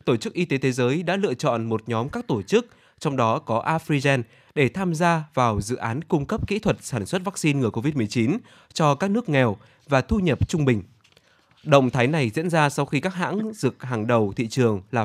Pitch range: 120-160 Hz